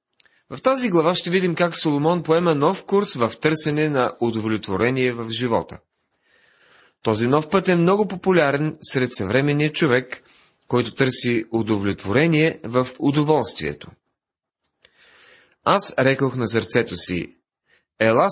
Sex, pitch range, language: male, 115-160 Hz, Bulgarian